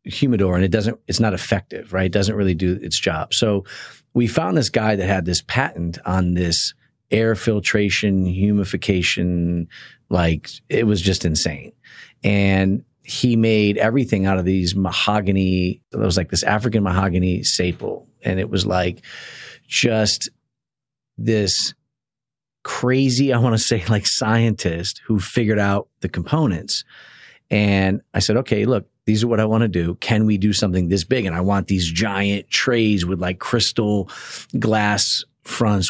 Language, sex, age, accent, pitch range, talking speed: English, male, 40-59, American, 95-110 Hz, 160 wpm